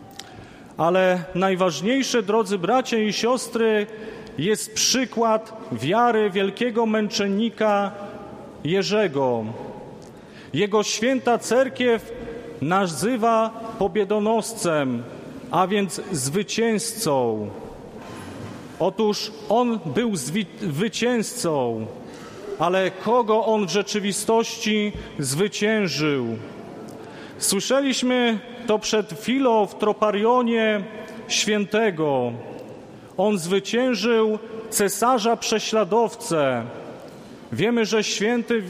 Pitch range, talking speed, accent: 195-230 Hz, 70 wpm, native